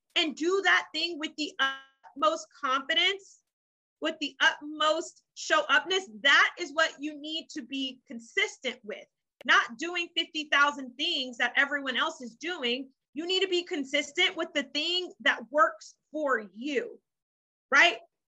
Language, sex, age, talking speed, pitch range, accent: English, female, 30-49, 145 wpm, 255-320 Hz, American